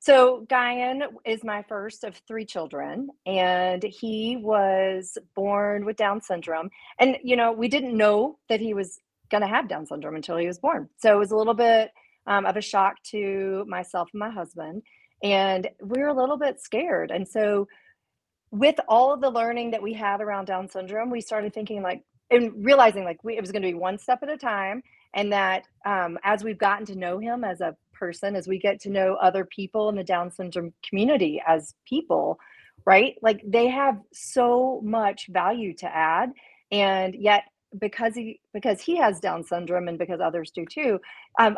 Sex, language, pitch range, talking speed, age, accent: female, English, 190-230 Hz, 195 wpm, 40-59, American